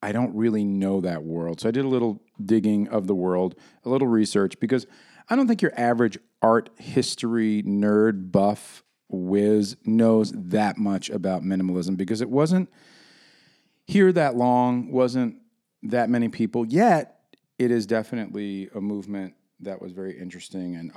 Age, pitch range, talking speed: 40-59, 95-125 Hz, 155 wpm